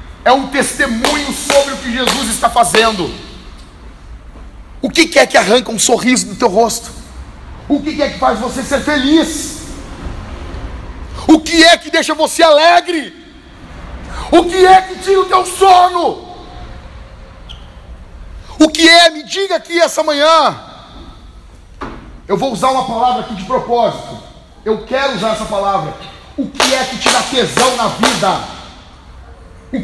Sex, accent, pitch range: male, Brazilian, 215-315 Hz